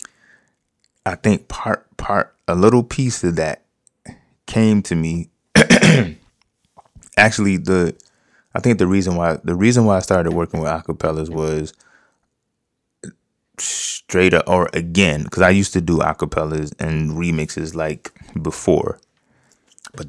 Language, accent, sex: English, American, male